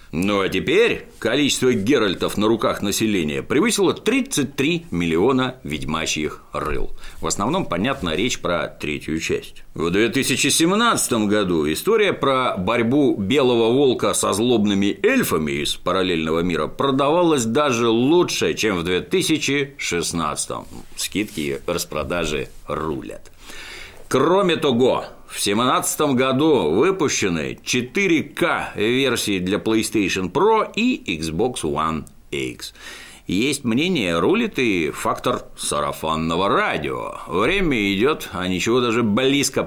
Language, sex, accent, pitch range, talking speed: Russian, male, native, 80-120 Hz, 105 wpm